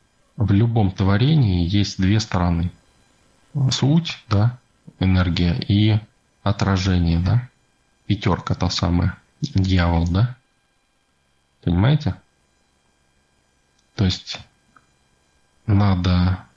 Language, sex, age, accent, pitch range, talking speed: Russian, male, 20-39, native, 85-105 Hz, 75 wpm